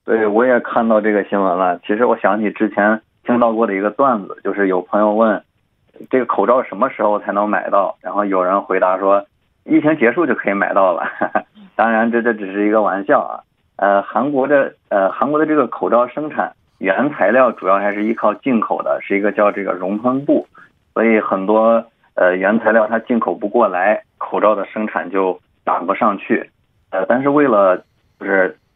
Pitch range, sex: 100-120 Hz, male